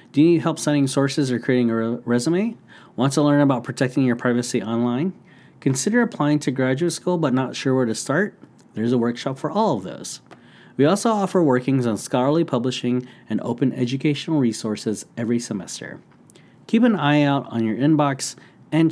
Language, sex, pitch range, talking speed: English, male, 120-150 Hz, 180 wpm